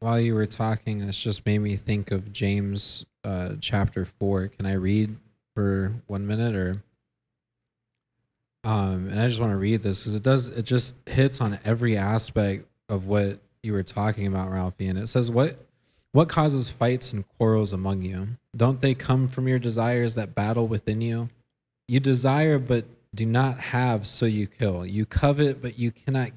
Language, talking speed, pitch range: English, 180 wpm, 110-130 Hz